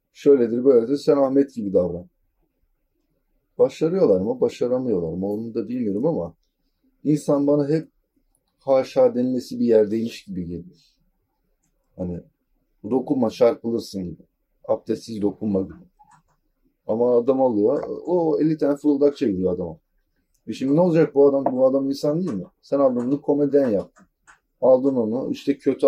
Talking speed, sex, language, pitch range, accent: 135 wpm, male, Turkish, 105-155 Hz, native